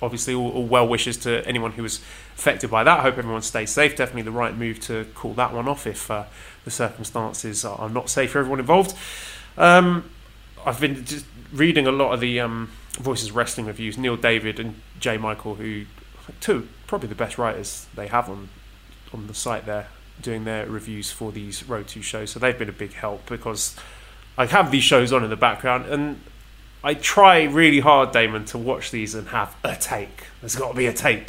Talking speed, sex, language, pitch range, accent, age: 210 wpm, male, English, 110-140 Hz, British, 20-39